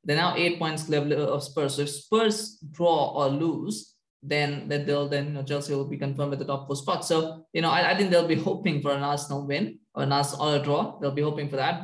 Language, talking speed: English, 265 wpm